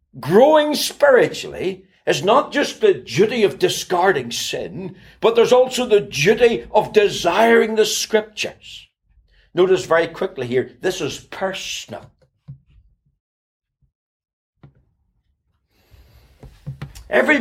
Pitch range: 120-185 Hz